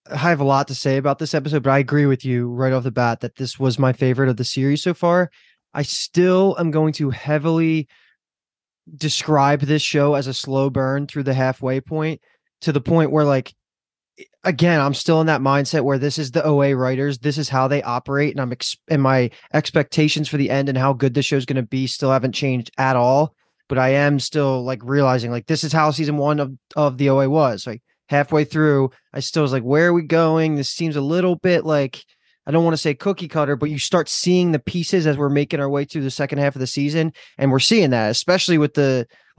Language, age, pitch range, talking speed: English, 20-39, 135-160 Hz, 240 wpm